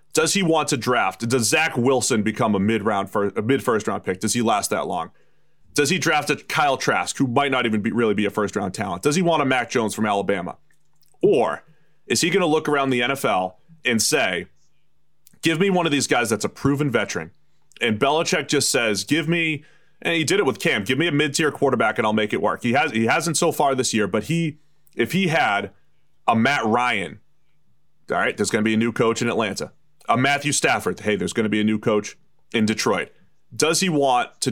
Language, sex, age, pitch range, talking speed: English, male, 30-49, 110-150 Hz, 225 wpm